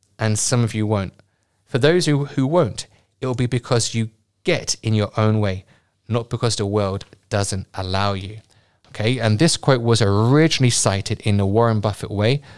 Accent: British